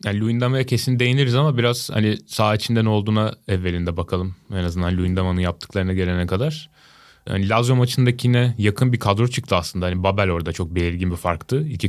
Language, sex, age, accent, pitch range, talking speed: Turkish, male, 30-49, native, 95-115 Hz, 175 wpm